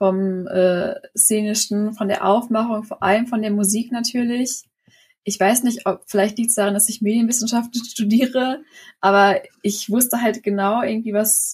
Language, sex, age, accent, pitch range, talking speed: German, female, 10-29, German, 195-230 Hz, 160 wpm